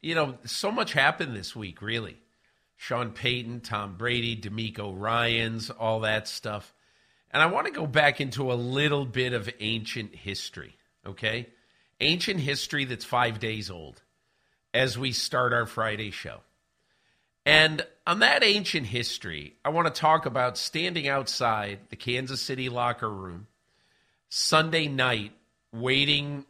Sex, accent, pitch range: male, American, 110-135 Hz